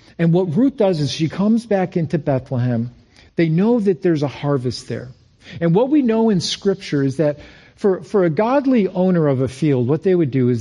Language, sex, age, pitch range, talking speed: English, male, 50-69, 130-185 Hz, 215 wpm